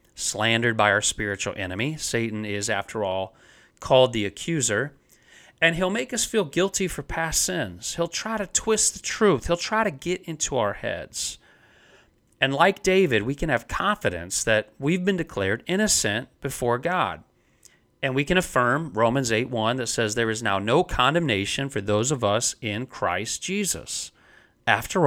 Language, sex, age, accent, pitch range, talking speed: English, male, 40-59, American, 105-155 Hz, 170 wpm